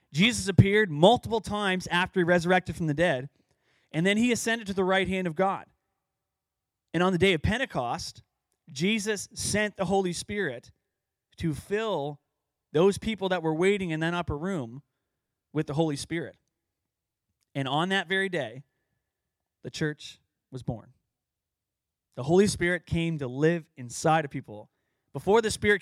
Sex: male